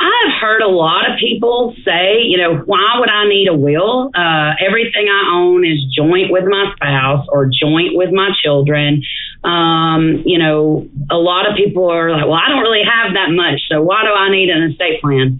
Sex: female